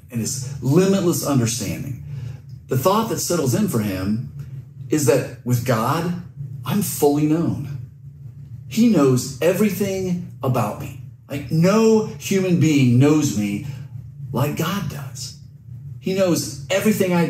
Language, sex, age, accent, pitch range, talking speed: English, male, 40-59, American, 130-165 Hz, 125 wpm